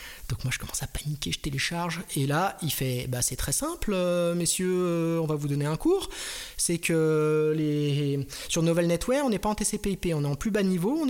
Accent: French